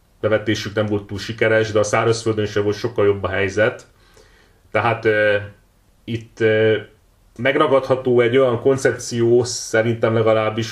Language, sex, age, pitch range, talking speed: Hungarian, male, 30-49, 105-120 Hz, 135 wpm